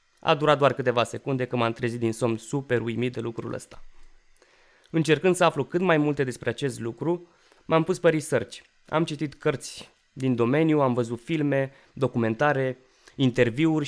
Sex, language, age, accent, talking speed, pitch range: male, Romanian, 20-39, native, 165 wpm, 120-150 Hz